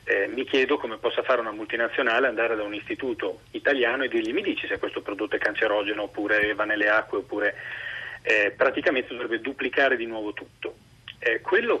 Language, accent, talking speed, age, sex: Italian, native, 185 wpm, 30-49, male